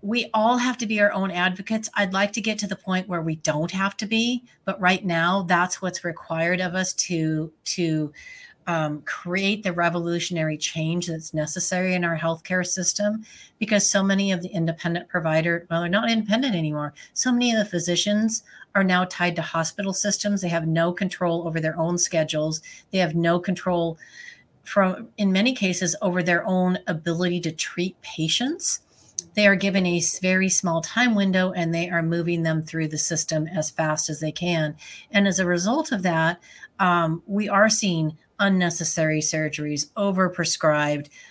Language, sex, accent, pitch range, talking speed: English, female, American, 165-200 Hz, 175 wpm